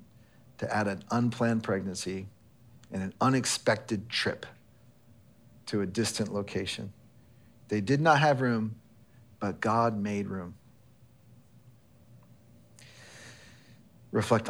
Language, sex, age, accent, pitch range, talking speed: English, male, 40-59, American, 105-125 Hz, 95 wpm